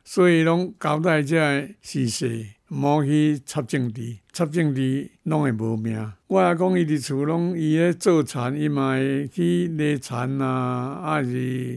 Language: Chinese